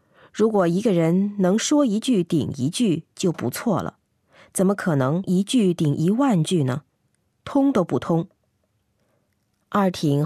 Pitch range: 145-200 Hz